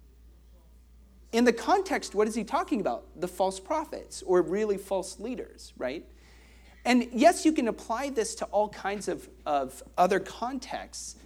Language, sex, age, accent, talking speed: English, male, 40-59, American, 155 wpm